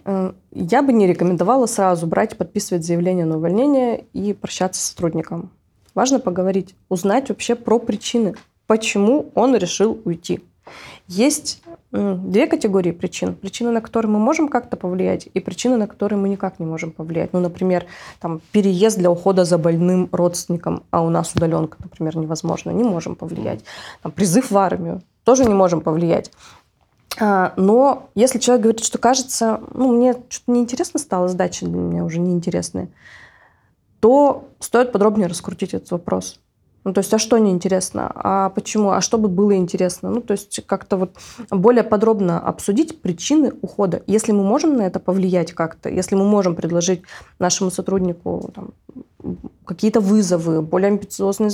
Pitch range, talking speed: 180-225 Hz, 155 wpm